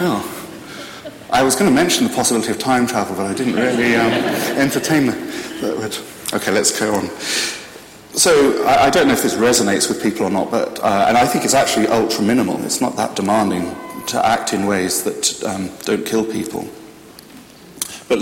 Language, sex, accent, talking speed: English, male, British, 190 wpm